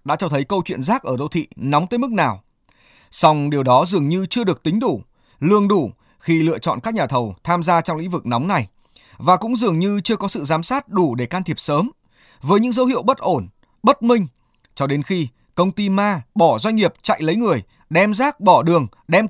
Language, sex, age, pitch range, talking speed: Vietnamese, male, 20-39, 145-205 Hz, 235 wpm